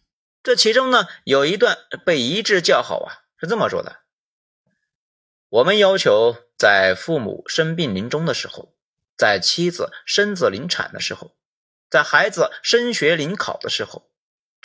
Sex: male